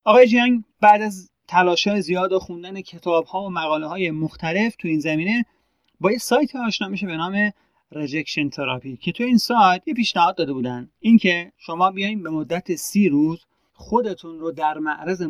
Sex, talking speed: male, 175 wpm